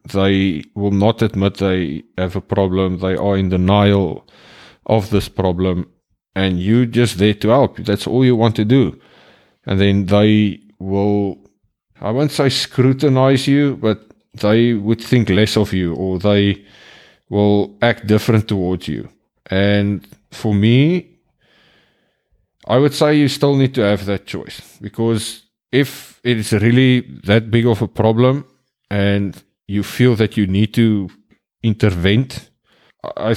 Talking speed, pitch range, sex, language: 145 wpm, 95-120 Hz, male, English